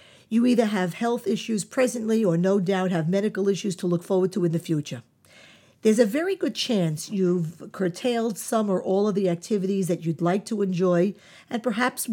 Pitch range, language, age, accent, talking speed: 175-245 Hz, English, 50-69, American, 195 wpm